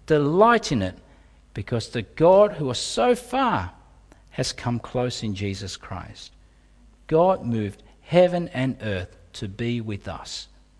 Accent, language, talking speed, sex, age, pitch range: Australian, English, 140 wpm, male, 50-69, 90-130 Hz